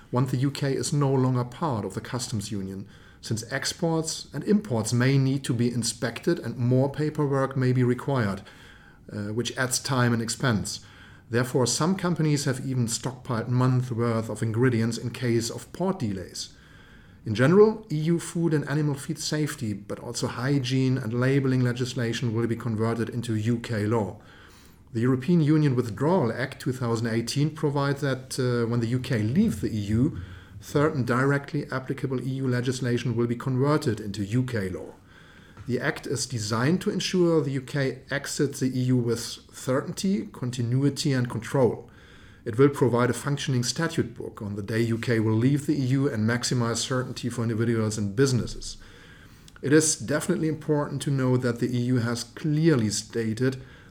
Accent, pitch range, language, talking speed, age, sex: German, 115-140 Hz, English, 160 wpm, 40-59, male